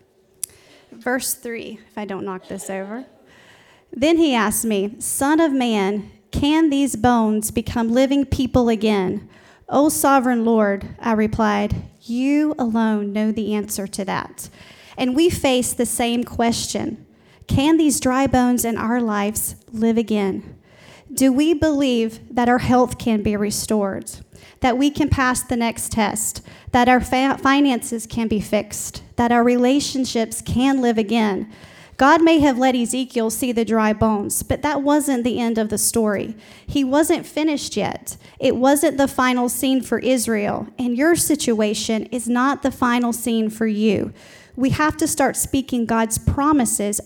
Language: English